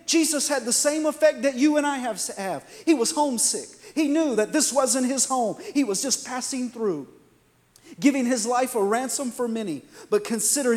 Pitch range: 145-215 Hz